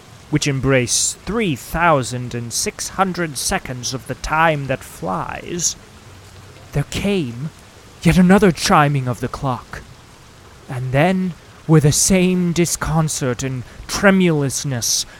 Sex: male